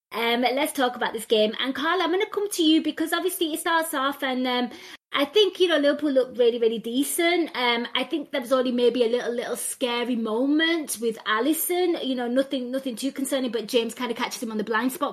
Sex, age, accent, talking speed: female, 20-39, British, 240 wpm